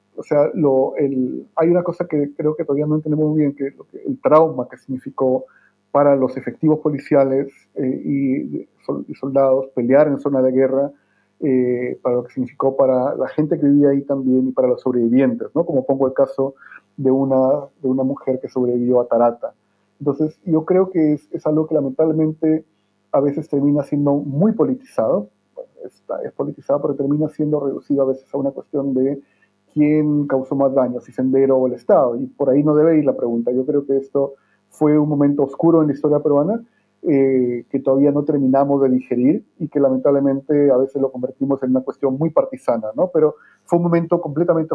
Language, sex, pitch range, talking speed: Spanish, male, 130-150 Hz, 200 wpm